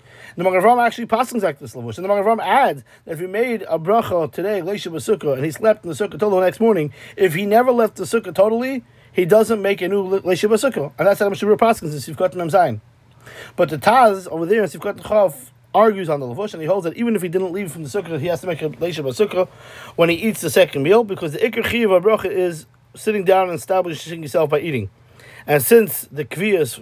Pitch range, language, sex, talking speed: 150-215 Hz, English, male, 245 wpm